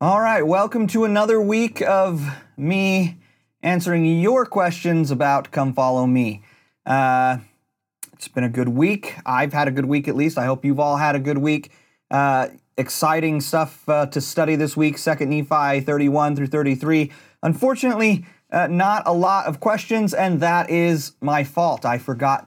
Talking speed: 170 wpm